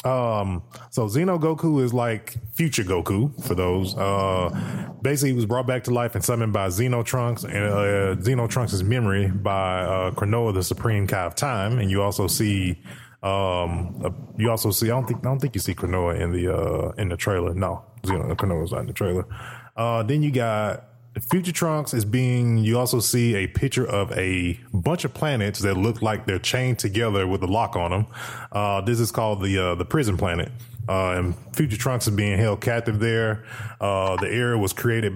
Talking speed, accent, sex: 205 wpm, American, male